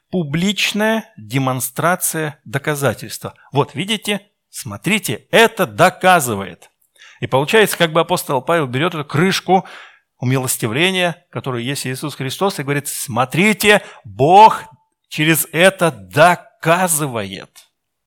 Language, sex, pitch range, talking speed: Russian, male, 125-175 Hz, 95 wpm